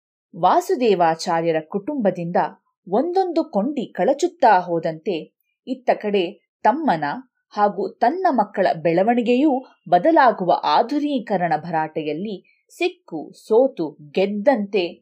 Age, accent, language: 20-39, native, Kannada